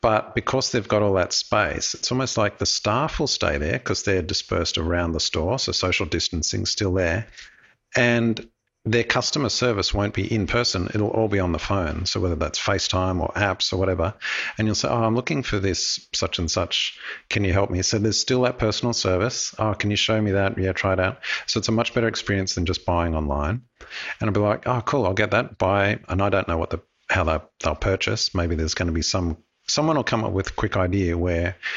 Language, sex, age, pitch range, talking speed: English, male, 50-69, 90-115 Hz, 235 wpm